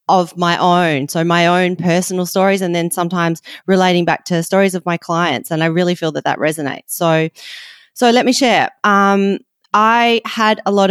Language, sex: English, female